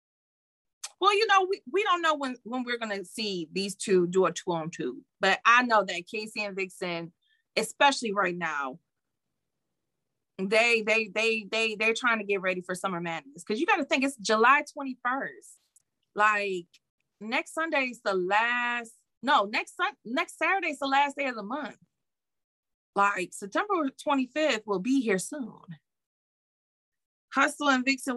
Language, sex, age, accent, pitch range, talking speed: English, female, 30-49, American, 195-285 Hz, 165 wpm